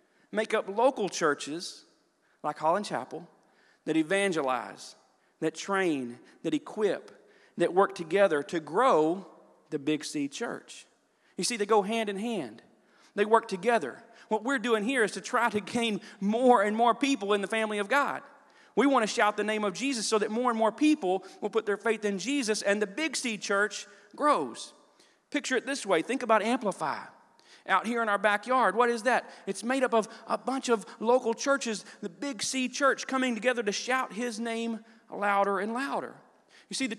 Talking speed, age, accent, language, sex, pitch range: 190 wpm, 40-59, American, English, male, 190-240 Hz